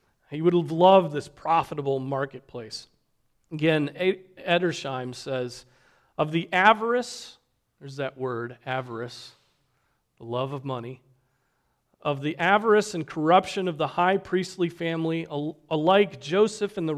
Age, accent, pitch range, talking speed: 40-59, American, 135-175 Hz, 125 wpm